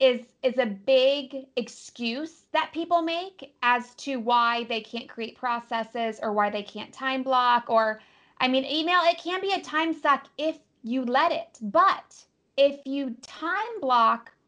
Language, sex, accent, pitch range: English, female, American, 230-275 Hz